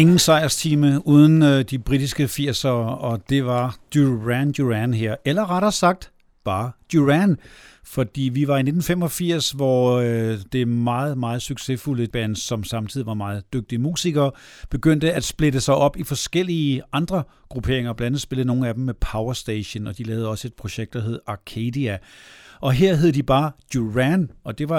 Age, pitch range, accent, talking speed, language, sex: 60-79, 120-155 Hz, native, 170 wpm, Danish, male